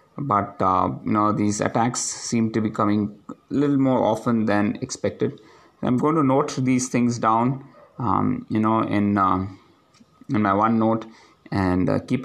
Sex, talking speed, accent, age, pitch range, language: male, 160 wpm, Indian, 20-39, 105-120 Hz, English